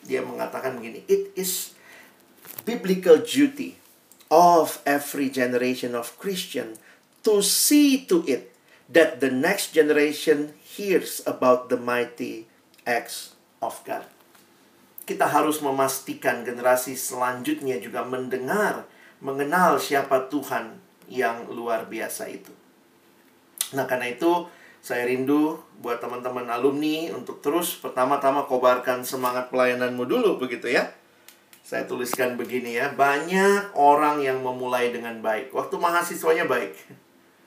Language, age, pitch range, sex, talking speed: Indonesian, 50-69, 125-155 Hz, male, 115 wpm